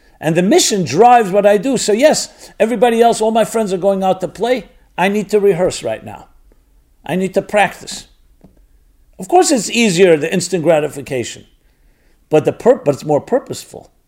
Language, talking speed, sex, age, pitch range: English, 175 wpm, male, 50-69, 130-200 Hz